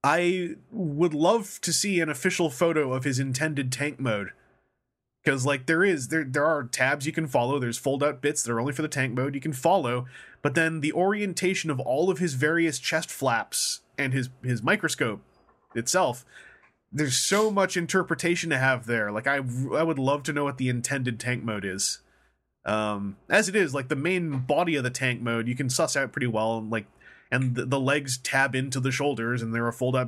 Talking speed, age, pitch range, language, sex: 210 wpm, 20-39, 120-160 Hz, English, male